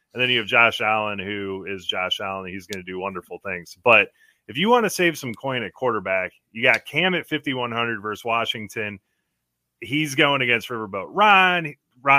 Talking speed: 185 wpm